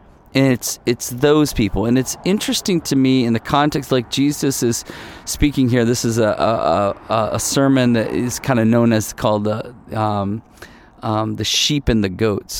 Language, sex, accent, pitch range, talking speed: English, male, American, 105-140 Hz, 185 wpm